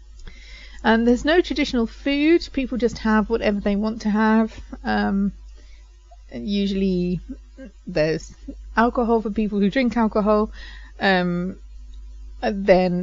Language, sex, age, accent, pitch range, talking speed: English, female, 30-49, British, 175-220 Hz, 120 wpm